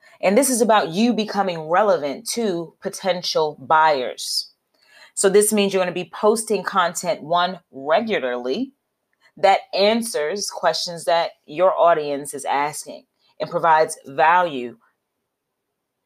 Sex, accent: female, American